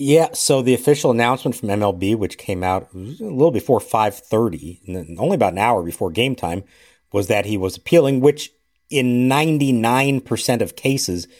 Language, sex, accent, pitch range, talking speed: English, male, American, 95-125 Hz, 165 wpm